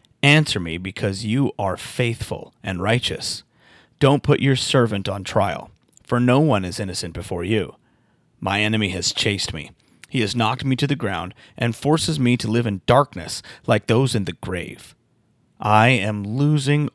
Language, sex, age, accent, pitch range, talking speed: English, male, 30-49, American, 105-130 Hz, 170 wpm